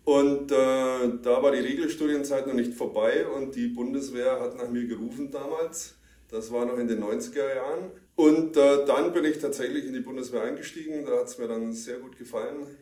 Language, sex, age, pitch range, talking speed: German, male, 30-49, 115-150 Hz, 195 wpm